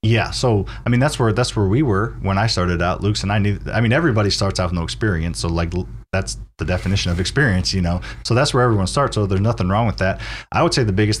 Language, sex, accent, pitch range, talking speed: English, male, American, 90-110 Hz, 275 wpm